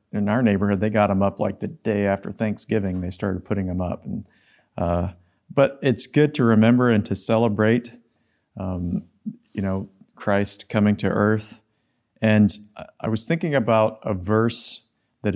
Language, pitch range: English, 100-115 Hz